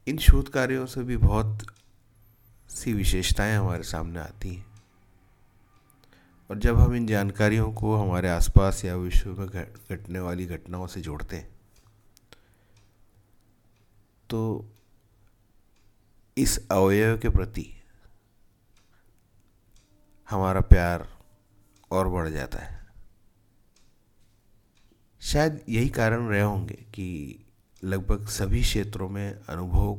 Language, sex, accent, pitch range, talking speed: Hindi, male, native, 95-110 Hz, 100 wpm